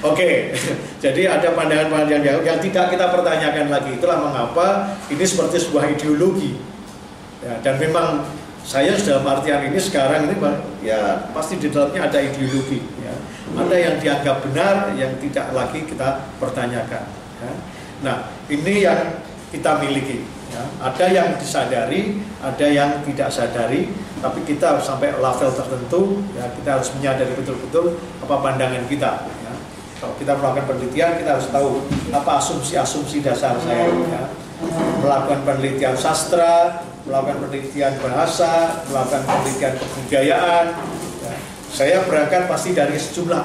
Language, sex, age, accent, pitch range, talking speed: Indonesian, male, 40-59, native, 140-175 Hz, 130 wpm